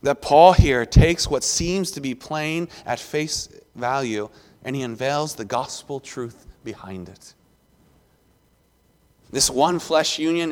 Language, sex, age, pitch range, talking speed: English, male, 30-49, 130-165 Hz, 135 wpm